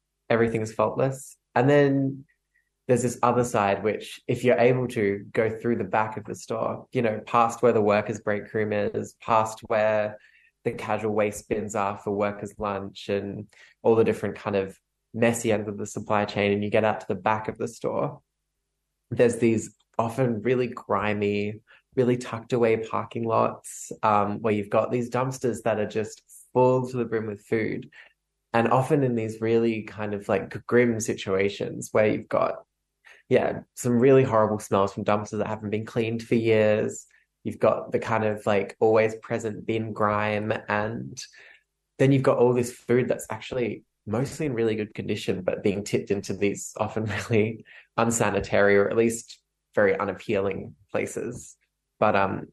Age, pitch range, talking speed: 20-39, 105-120 Hz, 175 wpm